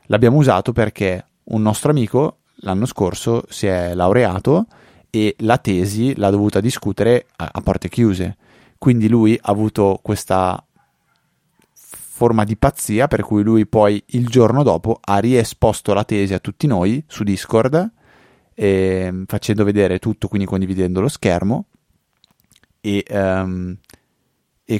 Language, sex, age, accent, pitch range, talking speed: Italian, male, 20-39, native, 95-115 Hz, 135 wpm